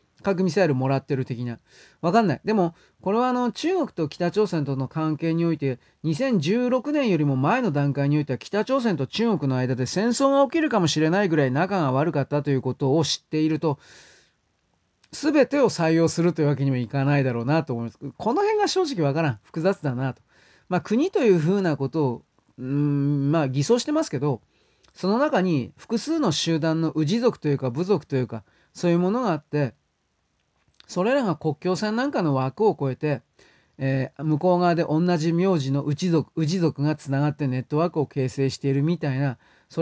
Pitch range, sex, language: 140-195 Hz, male, Japanese